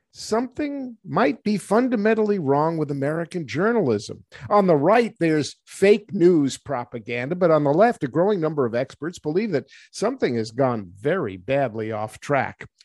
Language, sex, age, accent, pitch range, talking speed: English, male, 50-69, American, 130-195 Hz, 155 wpm